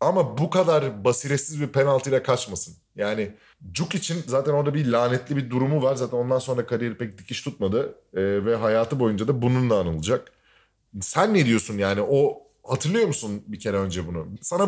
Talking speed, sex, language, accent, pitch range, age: 175 wpm, male, Turkish, native, 115-160 Hz, 30-49